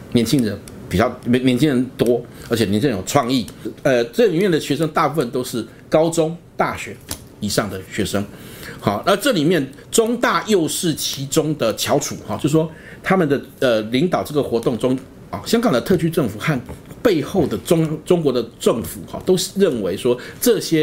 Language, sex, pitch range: Chinese, male, 105-160 Hz